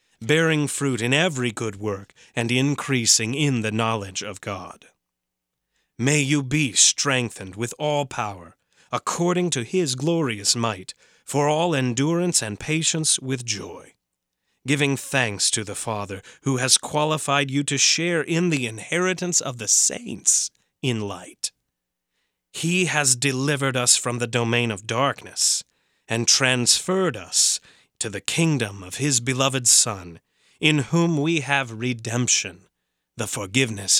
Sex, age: male, 30-49